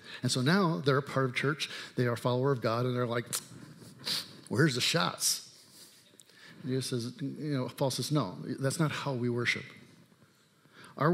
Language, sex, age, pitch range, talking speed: English, male, 50-69, 120-145 Hz, 185 wpm